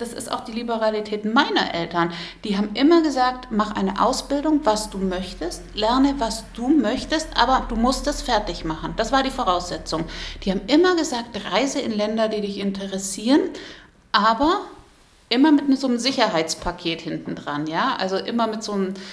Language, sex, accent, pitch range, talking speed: German, female, German, 200-250 Hz, 175 wpm